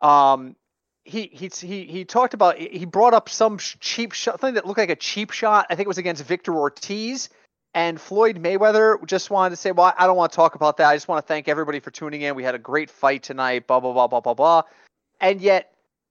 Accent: American